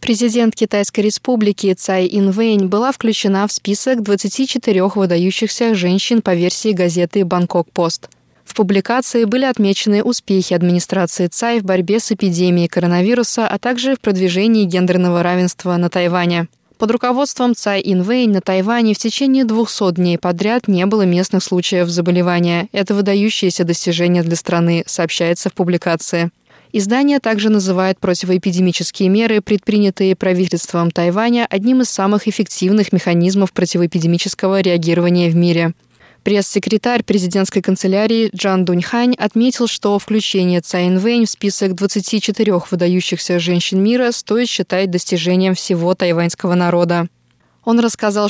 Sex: female